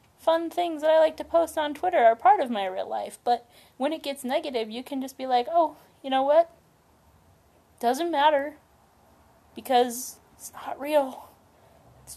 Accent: American